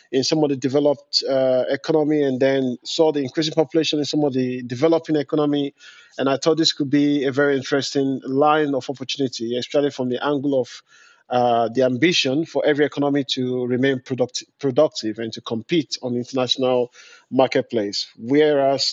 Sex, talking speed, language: male, 170 wpm, English